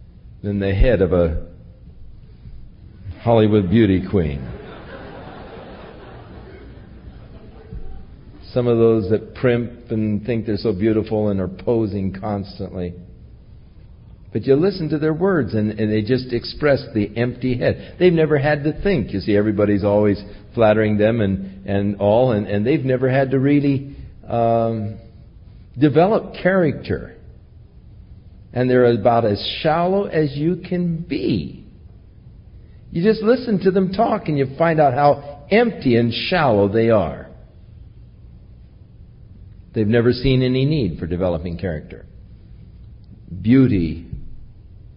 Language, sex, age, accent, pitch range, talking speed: English, male, 60-79, American, 95-130 Hz, 125 wpm